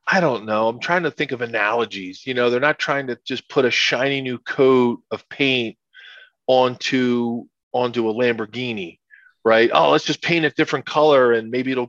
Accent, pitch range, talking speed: American, 115-140 Hz, 190 wpm